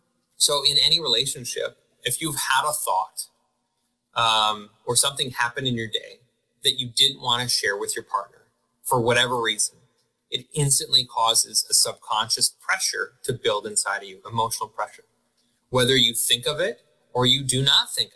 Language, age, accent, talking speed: English, 20-39, American, 170 wpm